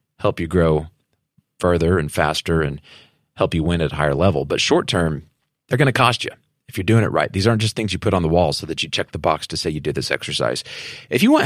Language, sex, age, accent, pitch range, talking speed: English, male, 30-49, American, 85-115 Hz, 260 wpm